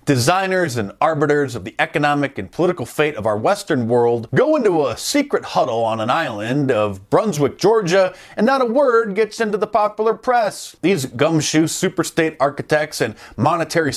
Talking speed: 170 wpm